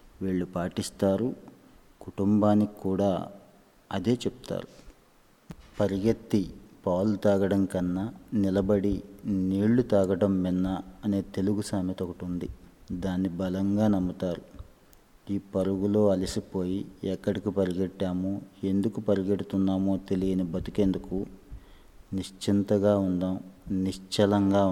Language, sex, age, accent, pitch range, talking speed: Telugu, male, 30-49, native, 90-100 Hz, 85 wpm